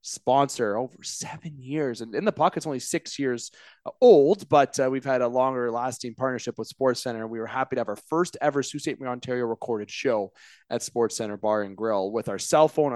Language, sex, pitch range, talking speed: English, male, 115-145 Hz, 215 wpm